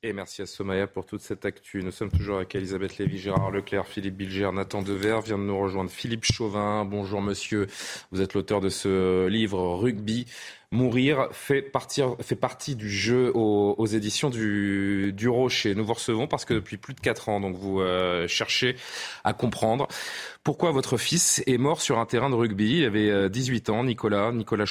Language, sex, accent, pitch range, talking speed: French, male, French, 100-120 Hz, 195 wpm